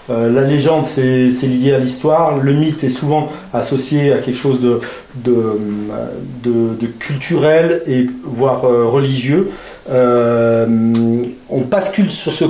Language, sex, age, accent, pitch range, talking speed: French, male, 30-49, French, 125-155 Hz, 115 wpm